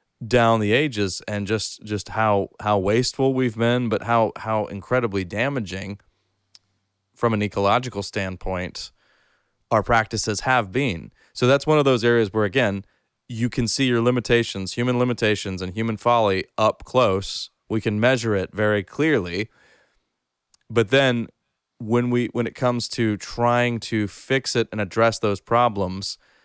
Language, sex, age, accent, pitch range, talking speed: English, male, 30-49, American, 95-120 Hz, 150 wpm